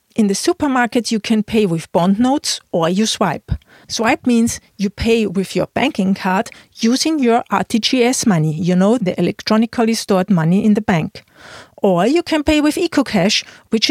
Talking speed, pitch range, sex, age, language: 175 wpm, 195-235 Hz, female, 40-59, English